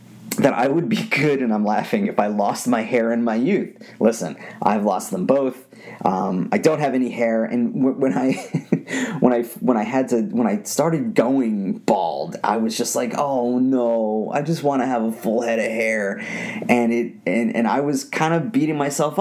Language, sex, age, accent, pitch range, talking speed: English, male, 30-49, American, 115-150 Hz, 210 wpm